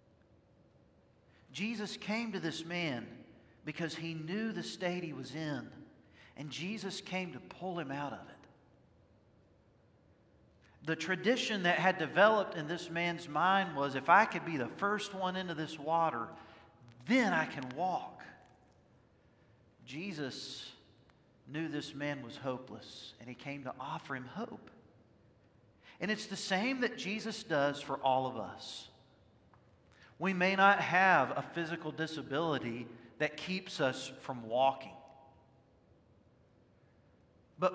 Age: 50-69